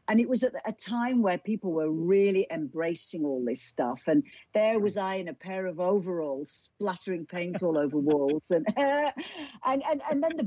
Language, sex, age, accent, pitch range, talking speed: English, female, 50-69, British, 180-250 Hz, 200 wpm